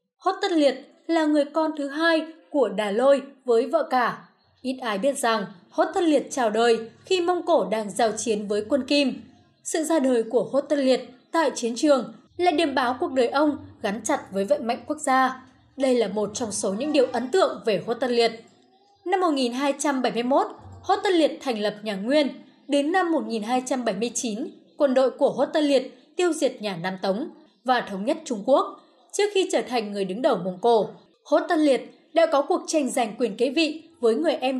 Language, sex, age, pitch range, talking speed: Vietnamese, female, 20-39, 235-310 Hz, 205 wpm